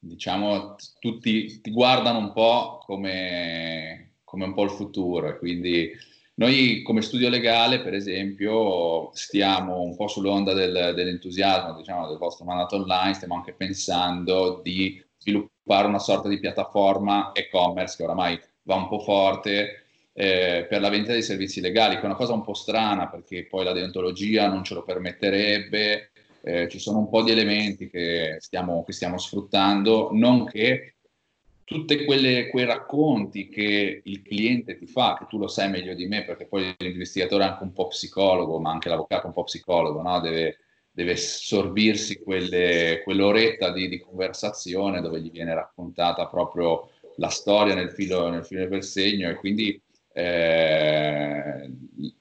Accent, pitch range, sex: native, 90-105 Hz, male